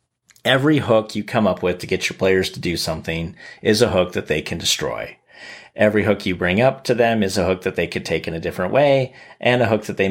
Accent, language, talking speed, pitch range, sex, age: American, English, 255 wpm, 95-120 Hz, male, 30-49